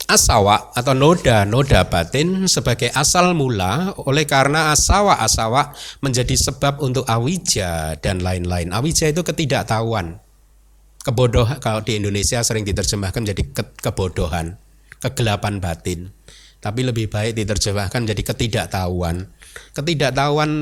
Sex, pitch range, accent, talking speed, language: male, 95-130 Hz, native, 110 wpm, Indonesian